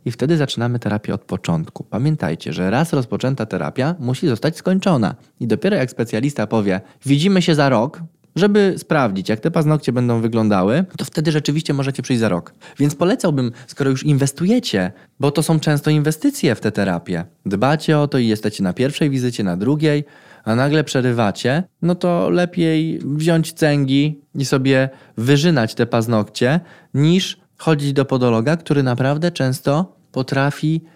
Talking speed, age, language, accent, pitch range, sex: 155 wpm, 20-39, Polish, native, 115-160 Hz, male